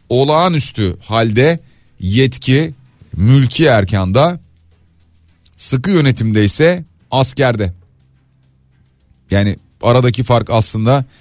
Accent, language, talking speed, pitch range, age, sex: native, Turkish, 70 wpm, 105-135 Hz, 40-59, male